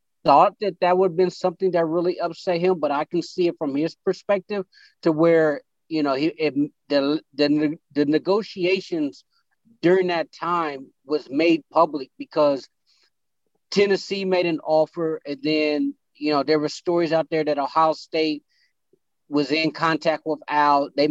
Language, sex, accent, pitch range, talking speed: English, male, American, 145-170 Hz, 165 wpm